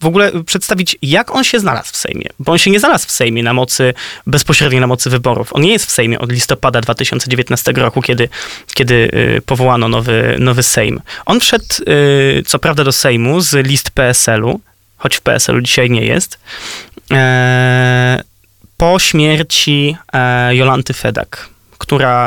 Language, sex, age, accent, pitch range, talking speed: Polish, male, 20-39, native, 125-155 Hz, 150 wpm